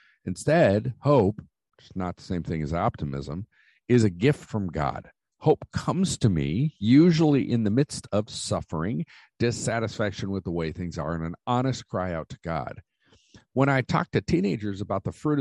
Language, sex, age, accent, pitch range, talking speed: English, male, 50-69, American, 90-130 Hz, 180 wpm